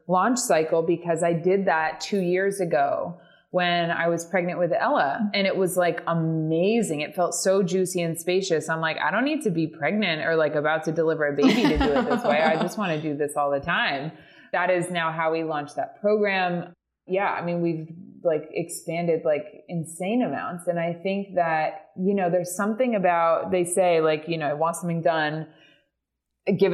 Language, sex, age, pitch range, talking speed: English, female, 20-39, 160-195 Hz, 205 wpm